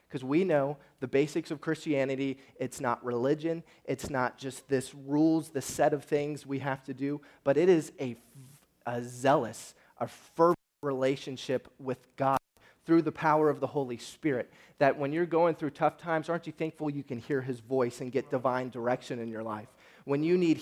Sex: male